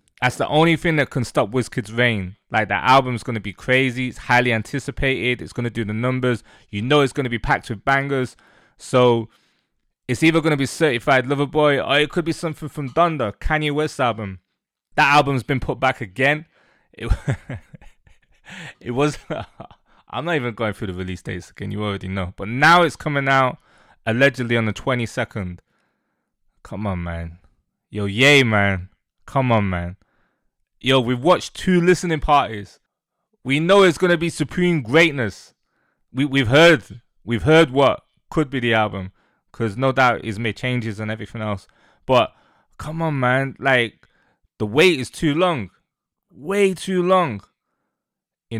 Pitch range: 110-150 Hz